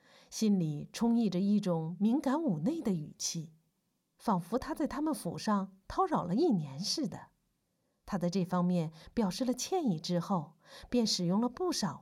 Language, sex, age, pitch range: Chinese, female, 50-69, 175-245 Hz